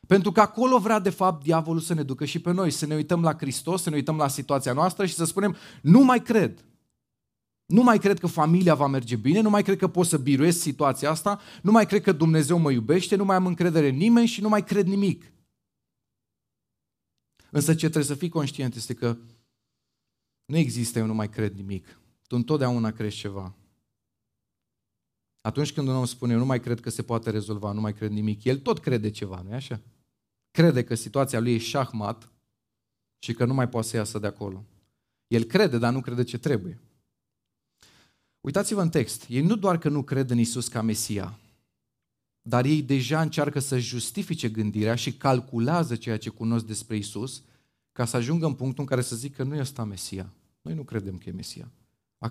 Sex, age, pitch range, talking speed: male, 30-49, 115-165 Hz, 200 wpm